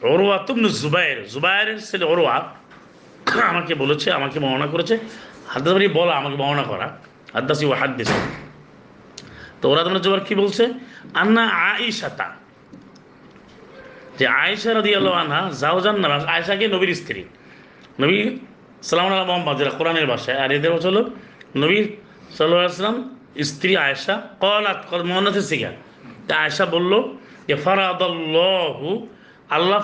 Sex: male